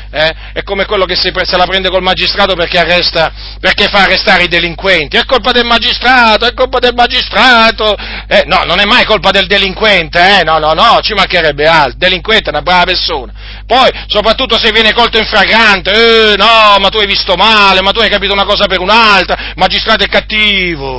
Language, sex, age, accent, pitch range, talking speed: Italian, male, 40-59, native, 190-285 Hz, 205 wpm